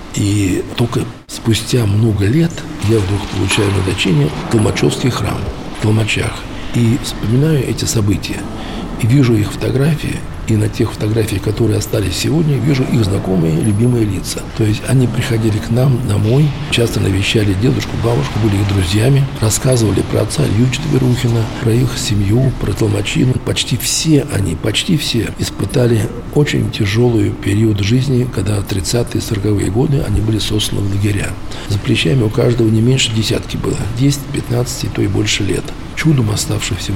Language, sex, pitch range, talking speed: Russian, male, 105-125 Hz, 155 wpm